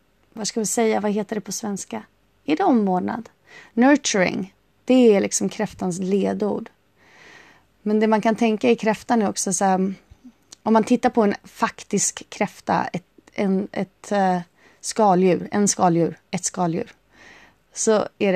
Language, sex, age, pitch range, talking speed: Swedish, female, 20-39, 190-230 Hz, 155 wpm